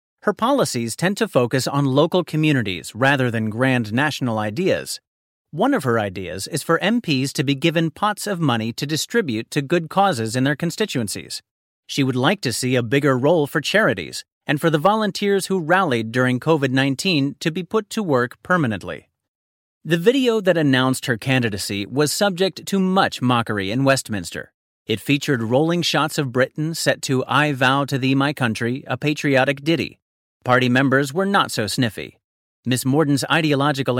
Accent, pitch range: American, 125-180 Hz